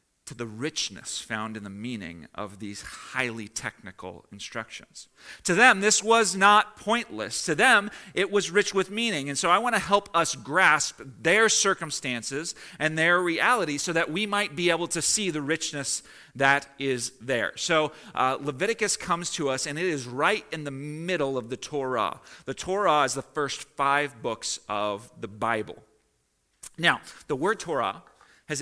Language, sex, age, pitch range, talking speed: English, male, 40-59, 135-195 Hz, 170 wpm